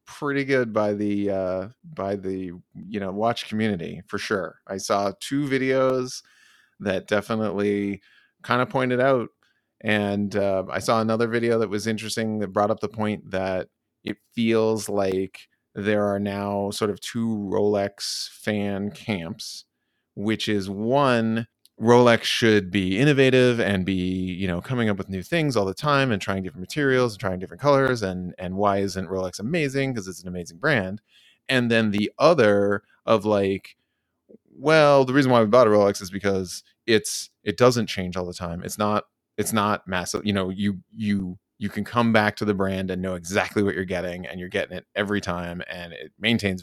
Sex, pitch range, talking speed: male, 95-115 Hz, 185 wpm